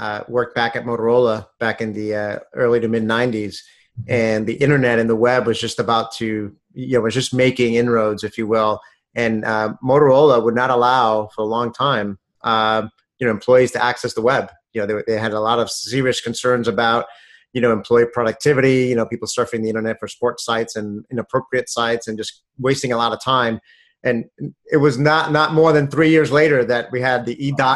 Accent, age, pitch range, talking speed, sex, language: American, 30-49, 115-135 Hz, 215 wpm, male, English